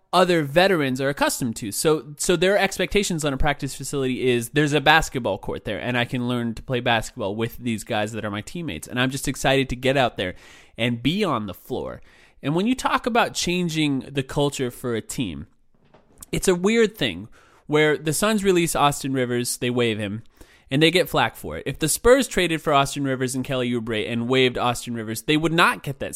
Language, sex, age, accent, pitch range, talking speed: English, male, 20-39, American, 125-175 Hz, 220 wpm